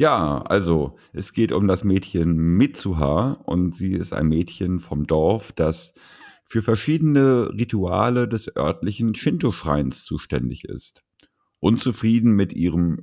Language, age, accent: German, 50-69, German